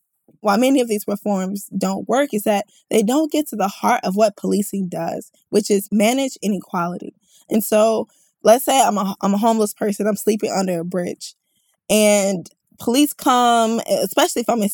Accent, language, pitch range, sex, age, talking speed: American, English, 200-260 Hz, female, 10-29, 180 wpm